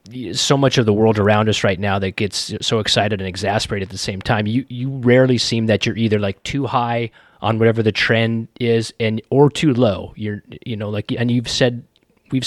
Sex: male